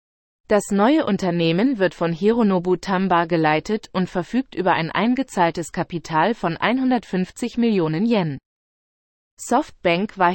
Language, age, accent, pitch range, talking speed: German, 30-49, German, 170-220 Hz, 115 wpm